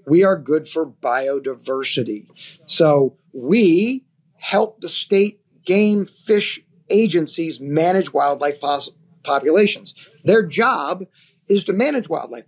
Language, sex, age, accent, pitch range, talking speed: English, male, 40-59, American, 150-185 Hz, 105 wpm